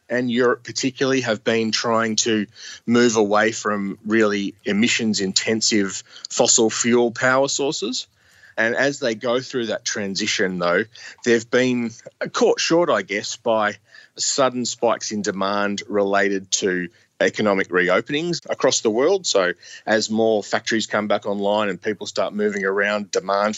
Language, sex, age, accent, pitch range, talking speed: English, male, 30-49, Australian, 100-120 Hz, 140 wpm